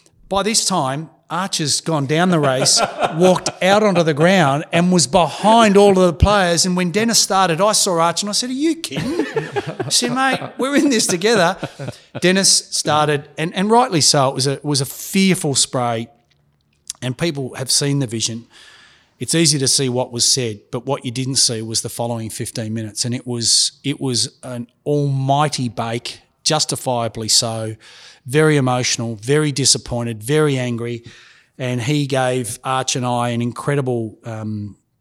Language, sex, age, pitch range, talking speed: English, male, 30-49, 120-155 Hz, 175 wpm